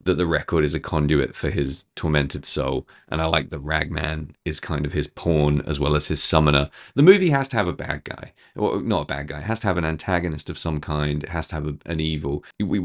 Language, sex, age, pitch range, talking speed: English, male, 30-49, 75-90 Hz, 255 wpm